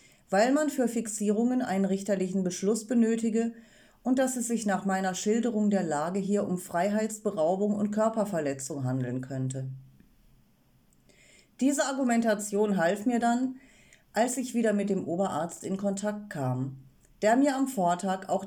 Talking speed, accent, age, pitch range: 140 wpm, German, 40-59, 175-230 Hz